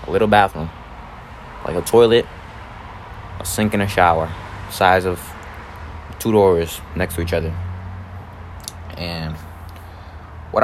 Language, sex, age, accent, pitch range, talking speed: English, male, 20-39, American, 85-120 Hz, 120 wpm